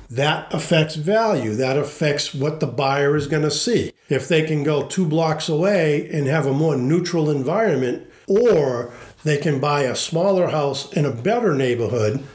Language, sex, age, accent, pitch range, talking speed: English, male, 50-69, American, 145-180 Hz, 175 wpm